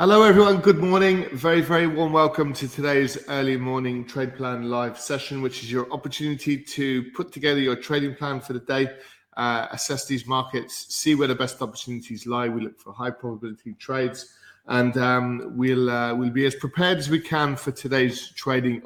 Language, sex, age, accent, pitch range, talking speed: English, male, 20-39, British, 120-145 Hz, 190 wpm